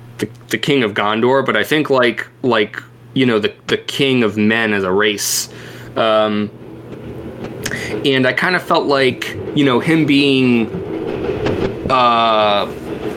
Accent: American